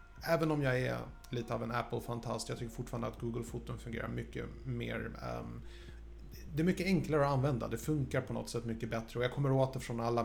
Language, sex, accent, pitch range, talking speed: Swedish, male, Norwegian, 115-135 Hz, 205 wpm